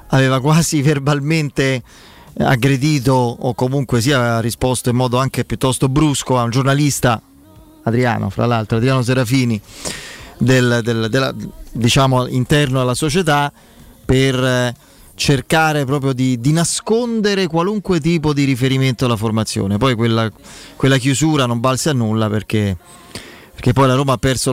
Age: 30-49